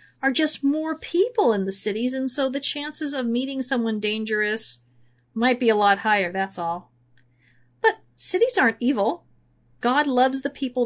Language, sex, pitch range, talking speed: English, female, 205-270 Hz, 165 wpm